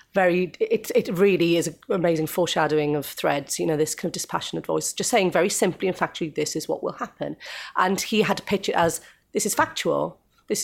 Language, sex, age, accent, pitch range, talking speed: English, female, 30-49, British, 155-185 Hz, 220 wpm